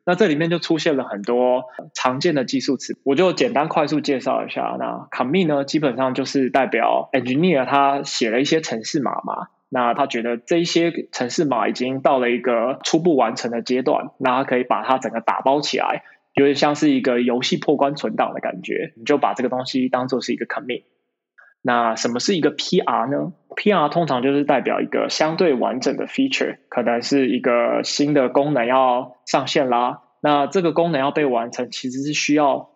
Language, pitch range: Chinese, 125-150 Hz